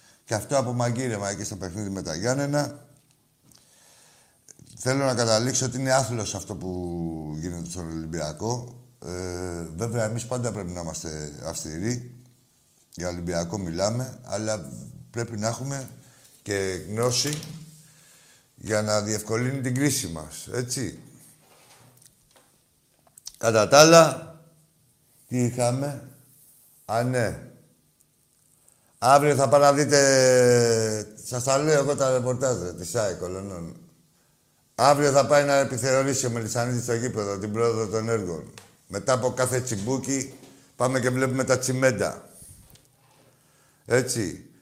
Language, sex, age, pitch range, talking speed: Greek, male, 60-79, 105-130 Hz, 120 wpm